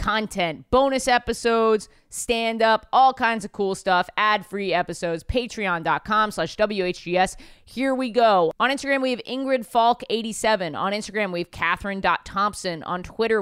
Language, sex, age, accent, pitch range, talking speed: English, female, 20-39, American, 180-225 Hz, 150 wpm